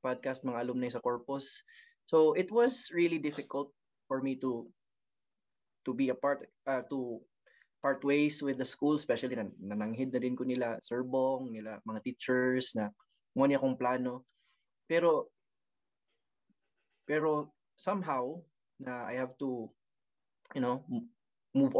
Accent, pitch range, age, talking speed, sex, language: Filipino, 125-150 Hz, 20-39, 145 wpm, male, English